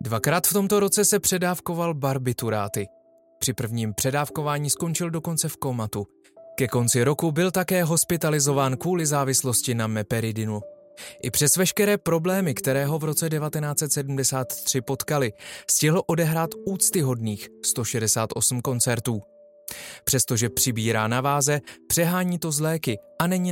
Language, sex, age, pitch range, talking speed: Czech, male, 20-39, 120-170 Hz, 120 wpm